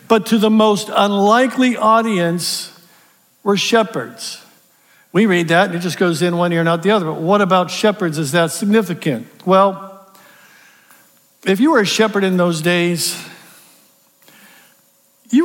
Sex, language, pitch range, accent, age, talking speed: male, English, 175-220 Hz, American, 50-69, 150 wpm